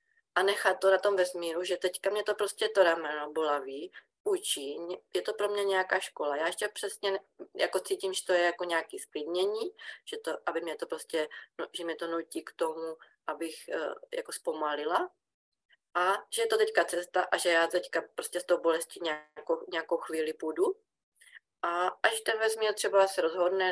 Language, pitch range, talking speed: Czech, 170-225 Hz, 185 wpm